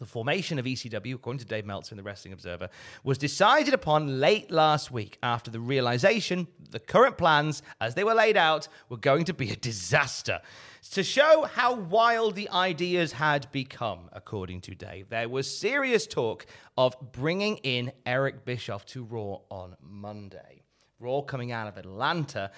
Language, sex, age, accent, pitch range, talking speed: English, male, 30-49, British, 115-150 Hz, 170 wpm